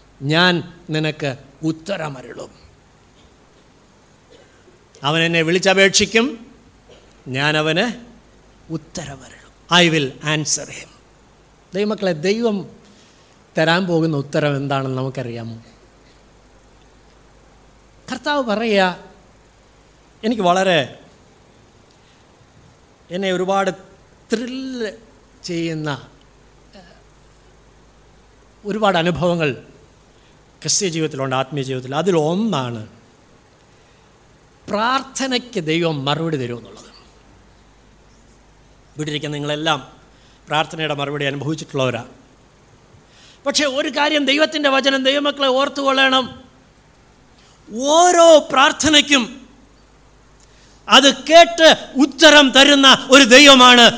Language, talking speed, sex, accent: Malayalam, 65 wpm, male, native